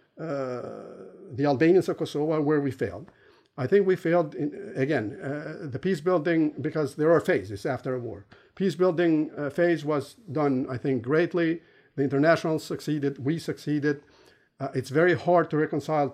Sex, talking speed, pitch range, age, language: male, 165 wpm, 135-165 Hz, 50-69, English